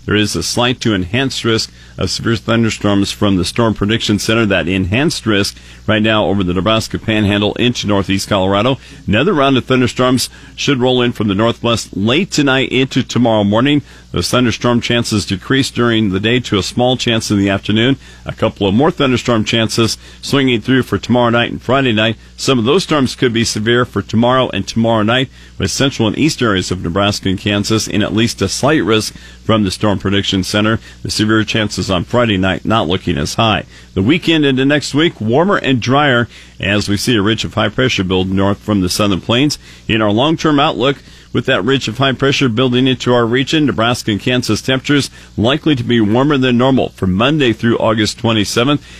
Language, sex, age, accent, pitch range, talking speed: English, male, 50-69, American, 100-125 Hz, 200 wpm